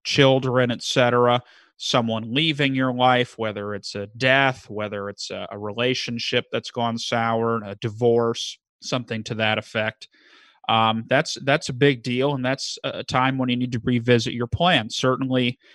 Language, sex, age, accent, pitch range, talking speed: English, male, 30-49, American, 115-135 Hz, 165 wpm